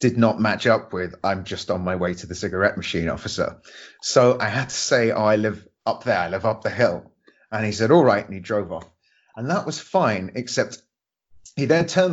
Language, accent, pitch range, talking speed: English, British, 100-120 Hz, 235 wpm